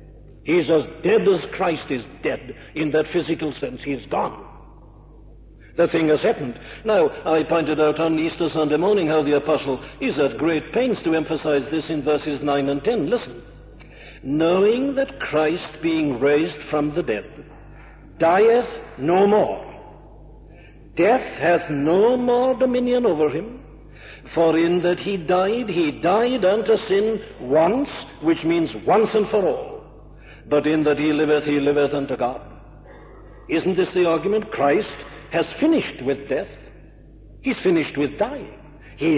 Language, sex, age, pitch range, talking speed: English, male, 60-79, 150-230 Hz, 150 wpm